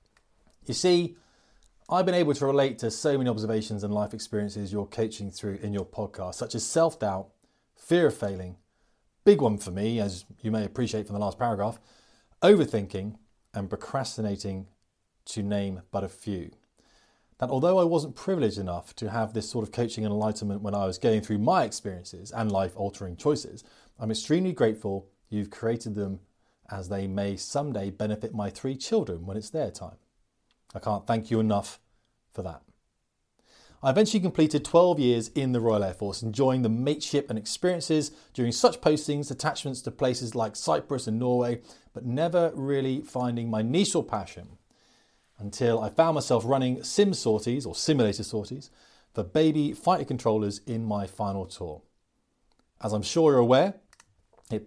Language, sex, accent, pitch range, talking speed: English, male, British, 105-140 Hz, 165 wpm